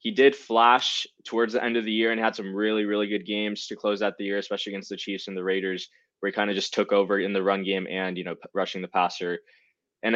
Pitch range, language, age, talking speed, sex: 100-115 Hz, English, 20-39, 280 wpm, male